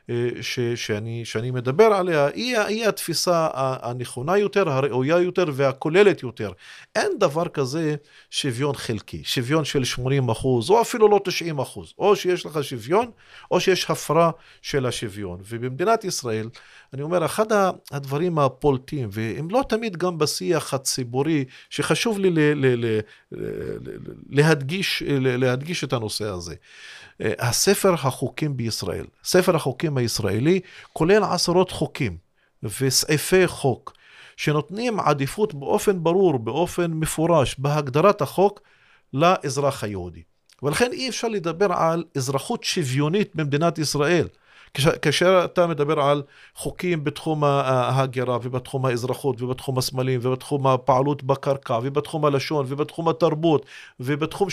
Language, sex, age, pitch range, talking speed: Hebrew, male, 40-59, 130-180 Hz, 120 wpm